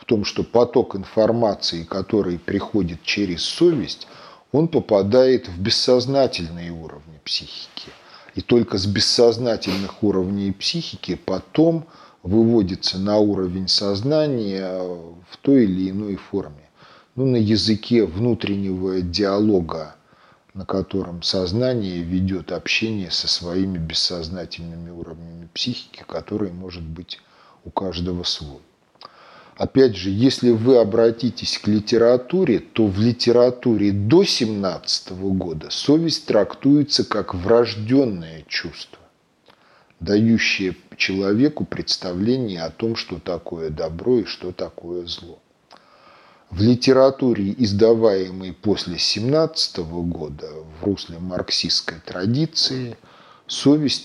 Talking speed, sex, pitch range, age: 105 wpm, male, 90-120 Hz, 40-59